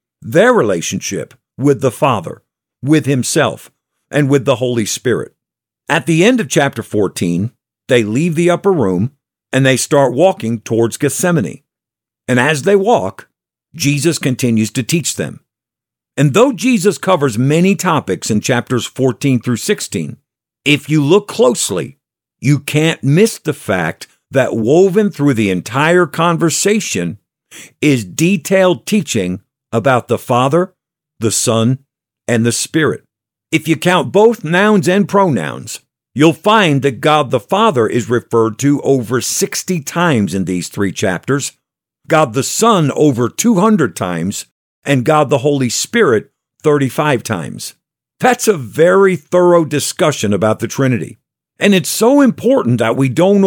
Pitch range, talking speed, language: 120-180 Hz, 140 wpm, English